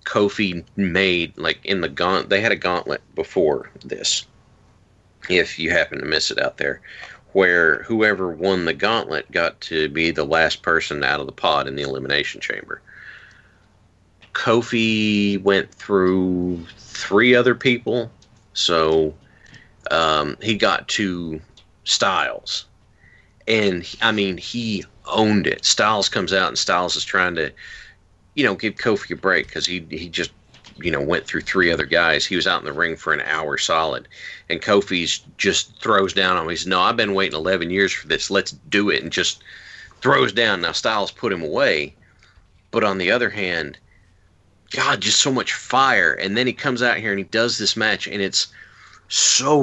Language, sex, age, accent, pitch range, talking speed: English, male, 40-59, American, 90-110 Hz, 175 wpm